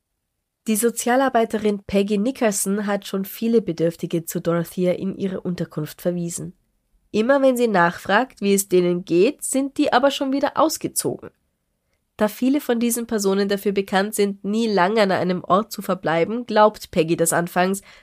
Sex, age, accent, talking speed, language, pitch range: female, 20-39, German, 155 wpm, German, 180-225 Hz